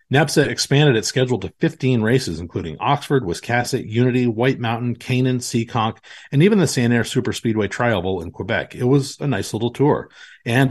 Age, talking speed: 40-59, 175 wpm